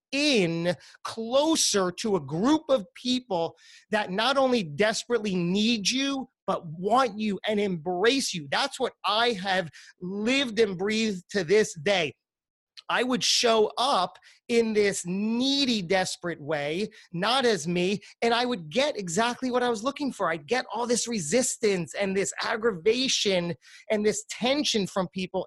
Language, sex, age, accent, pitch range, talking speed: English, male, 30-49, American, 180-230 Hz, 150 wpm